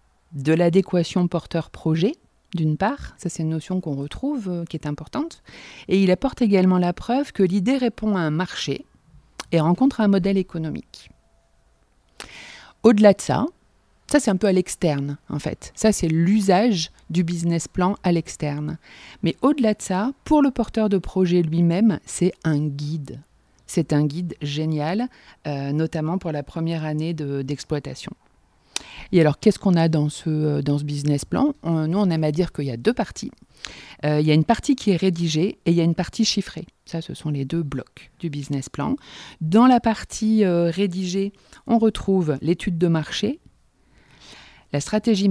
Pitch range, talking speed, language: 155-215 Hz, 175 wpm, French